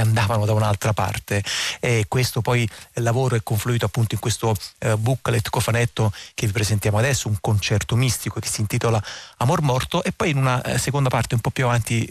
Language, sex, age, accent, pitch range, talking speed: Italian, male, 30-49, native, 110-130 Hz, 200 wpm